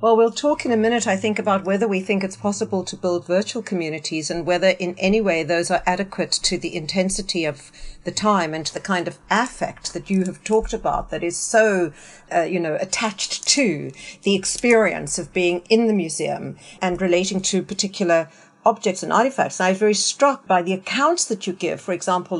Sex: female